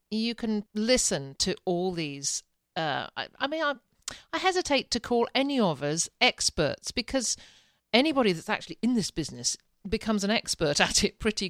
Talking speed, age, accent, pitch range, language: 165 wpm, 50-69, British, 165-225 Hz, English